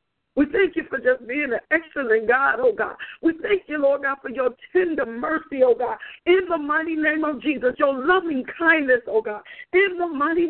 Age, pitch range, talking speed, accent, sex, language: 50-69, 265-360 Hz, 205 wpm, American, female, English